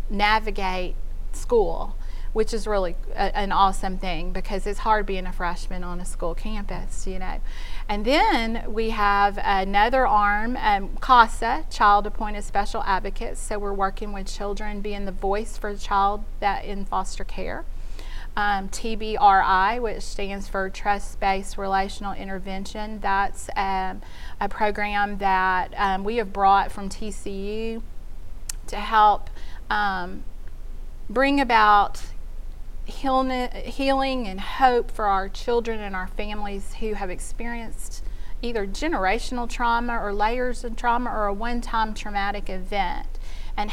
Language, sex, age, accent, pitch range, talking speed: English, female, 30-49, American, 190-220 Hz, 135 wpm